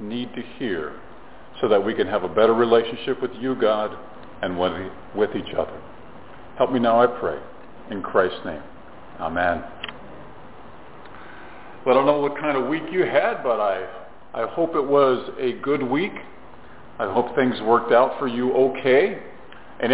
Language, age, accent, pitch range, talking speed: English, 50-69, American, 120-155 Hz, 165 wpm